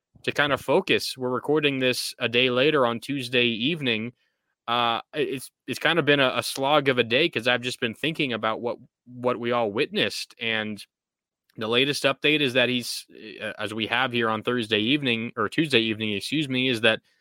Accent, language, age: American, English, 20-39